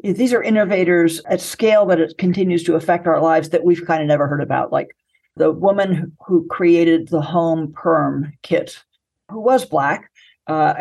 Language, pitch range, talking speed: English, 160-185 Hz, 180 wpm